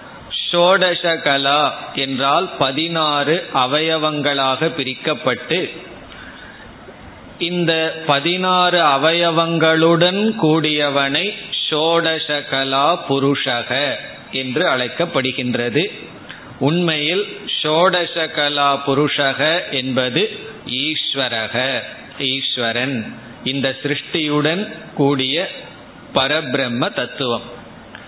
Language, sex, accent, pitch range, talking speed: Tamil, male, native, 135-165 Hz, 40 wpm